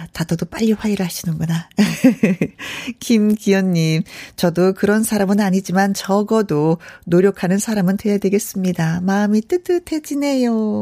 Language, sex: Korean, female